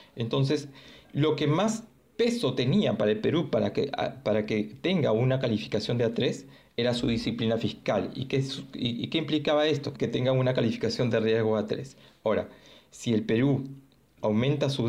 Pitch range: 110-135 Hz